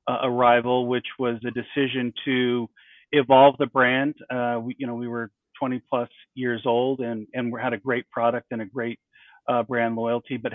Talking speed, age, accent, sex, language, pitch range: 195 wpm, 40-59, American, male, English, 120-135 Hz